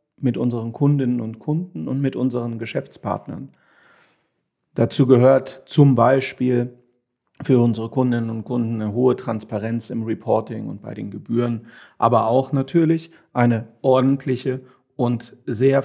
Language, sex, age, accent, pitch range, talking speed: German, male, 40-59, German, 120-145 Hz, 130 wpm